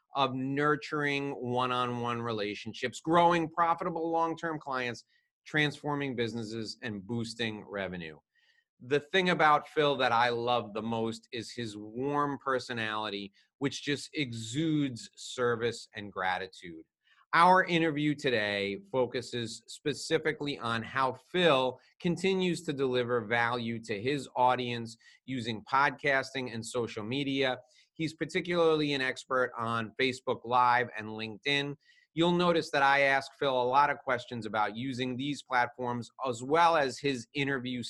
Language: English